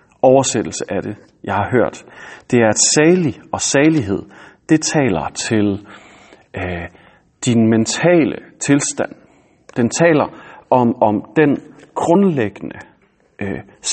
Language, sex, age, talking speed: Danish, male, 30-49, 110 wpm